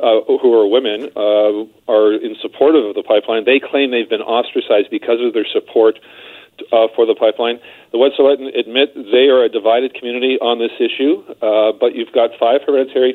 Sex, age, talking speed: male, 40-59, 185 wpm